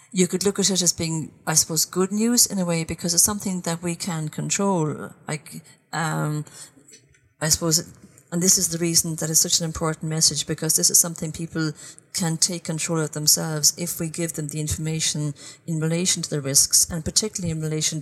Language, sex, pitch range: English, female, 150-175 Hz